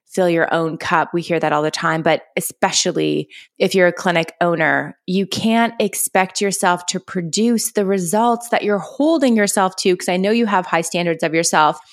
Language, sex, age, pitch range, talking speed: English, female, 20-39, 175-215 Hz, 195 wpm